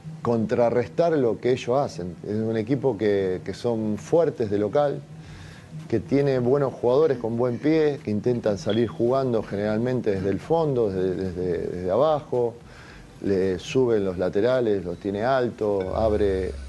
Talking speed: 145 wpm